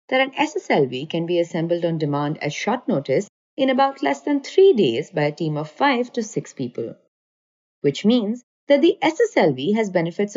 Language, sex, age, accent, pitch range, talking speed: English, female, 30-49, Indian, 170-275 Hz, 180 wpm